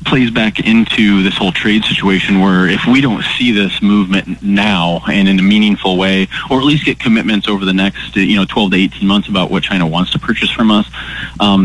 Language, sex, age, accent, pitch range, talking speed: English, male, 30-49, American, 95-105 Hz, 220 wpm